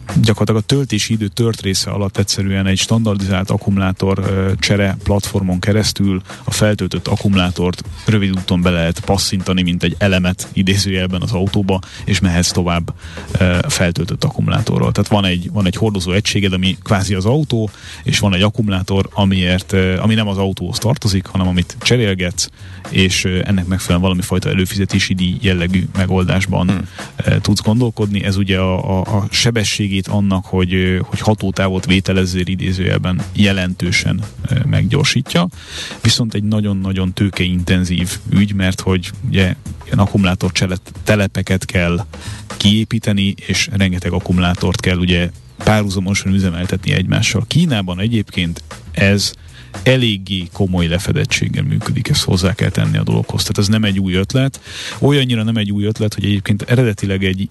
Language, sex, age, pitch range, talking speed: Hungarian, male, 30-49, 95-105 Hz, 140 wpm